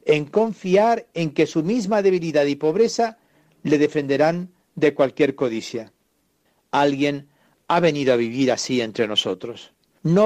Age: 60-79